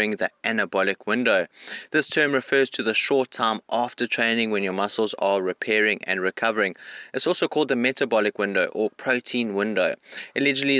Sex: male